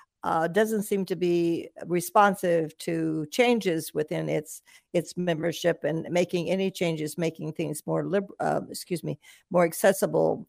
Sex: female